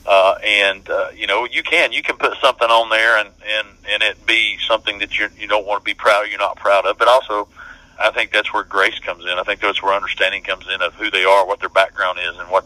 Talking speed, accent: 275 wpm, American